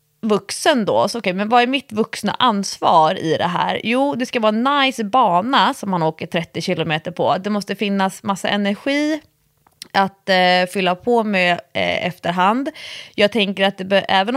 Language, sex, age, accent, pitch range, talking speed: English, female, 20-39, Swedish, 180-240 Hz, 165 wpm